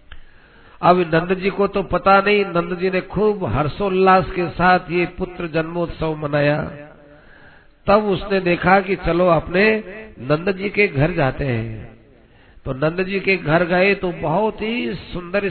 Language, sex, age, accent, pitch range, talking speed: Hindi, male, 50-69, native, 150-190 Hz, 155 wpm